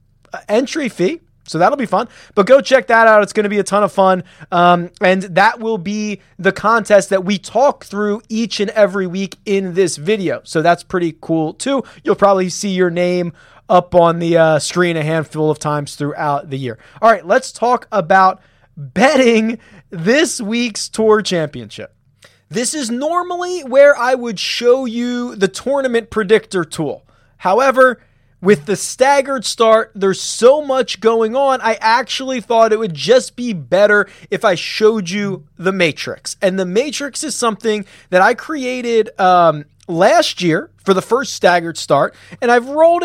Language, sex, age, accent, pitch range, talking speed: English, male, 20-39, American, 180-245 Hz, 170 wpm